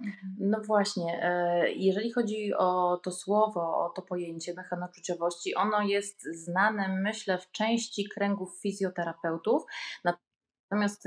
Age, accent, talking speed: 30-49, native, 110 wpm